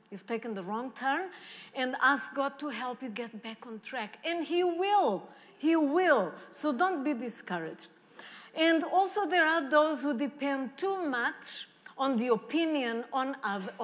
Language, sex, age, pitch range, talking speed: English, female, 40-59, 225-315 Hz, 165 wpm